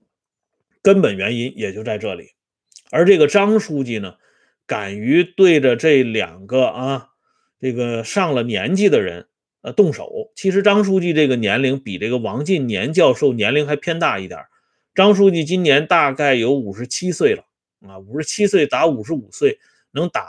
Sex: male